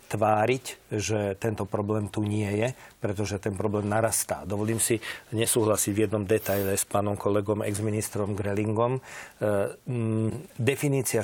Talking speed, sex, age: 125 wpm, male, 40-59